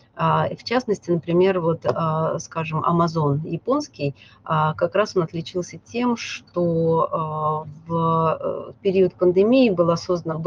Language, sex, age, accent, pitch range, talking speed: Russian, female, 30-49, native, 155-190 Hz, 105 wpm